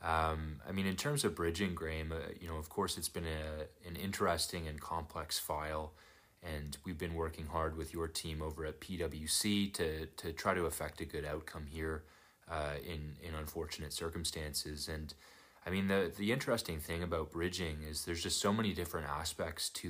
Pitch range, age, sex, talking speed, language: 80-90 Hz, 30-49, male, 190 wpm, English